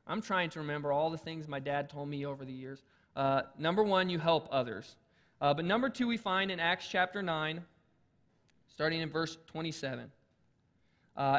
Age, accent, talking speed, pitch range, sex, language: 20-39, American, 180 wpm, 150-195 Hz, male, English